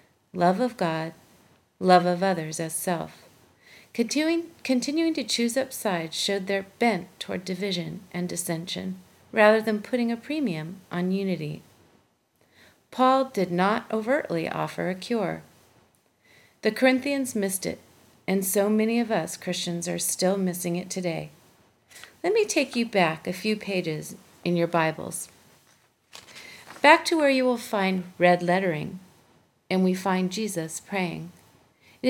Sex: female